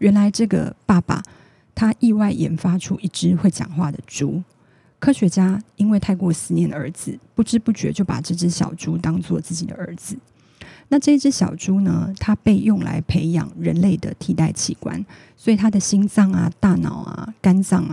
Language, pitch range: Chinese, 170-205 Hz